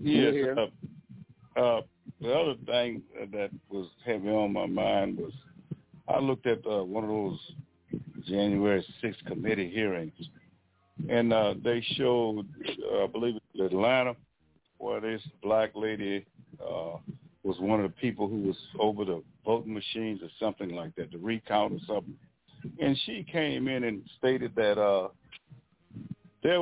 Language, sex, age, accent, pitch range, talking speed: English, male, 60-79, American, 100-125 Hz, 150 wpm